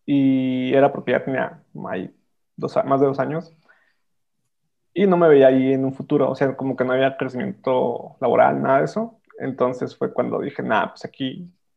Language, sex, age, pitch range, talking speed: Spanish, male, 20-39, 135-170 Hz, 175 wpm